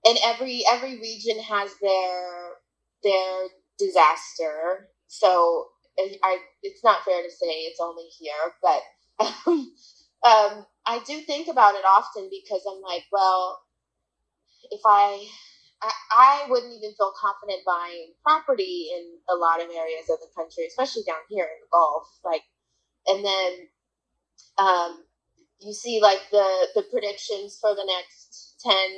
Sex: female